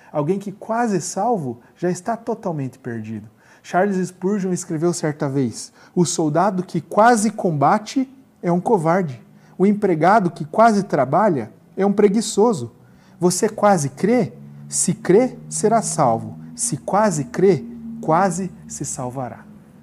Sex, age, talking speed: male, 40-59, 125 wpm